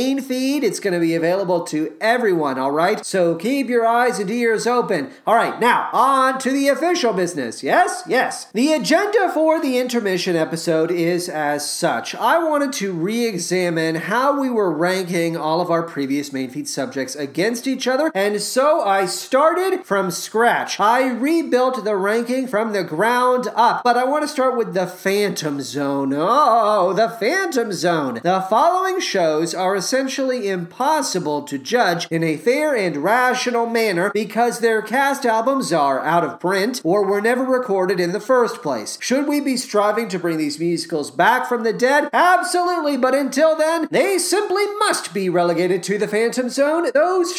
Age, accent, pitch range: 30-49, American, 185-285 Hz